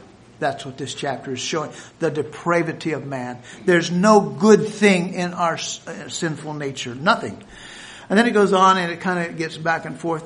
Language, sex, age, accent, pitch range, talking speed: English, male, 60-79, American, 150-205 Hz, 200 wpm